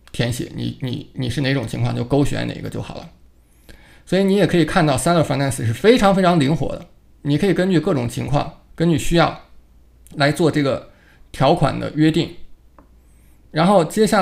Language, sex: Chinese, male